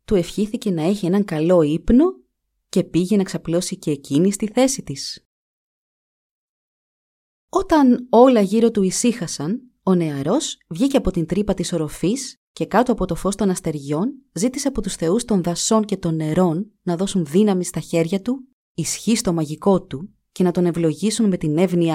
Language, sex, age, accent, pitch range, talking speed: Greek, female, 30-49, native, 165-230 Hz, 165 wpm